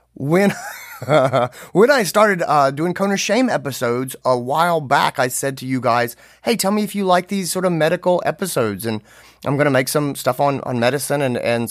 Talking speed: 205 wpm